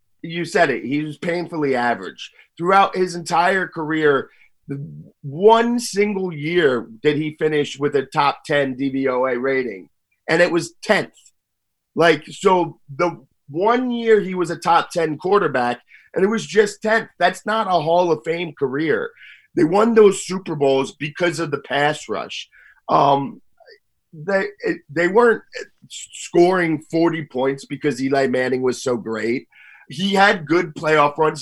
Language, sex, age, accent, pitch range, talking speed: English, male, 30-49, American, 145-205 Hz, 150 wpm